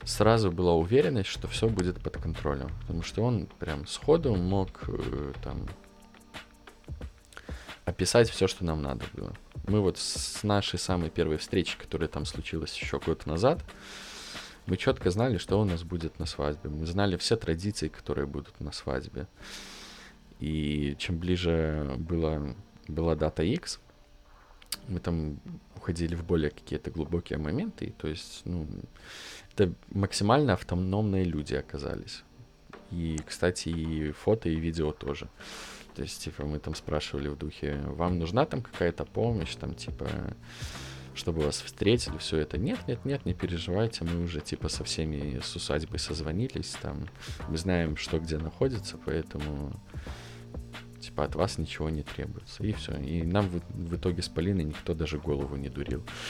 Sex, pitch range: male, 75-95 Hz